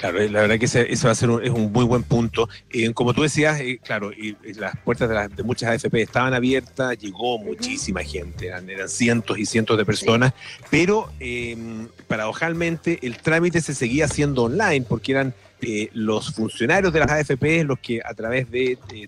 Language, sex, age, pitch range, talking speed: Spanish, male, 40-59, 110-140 Hz, 205 wpm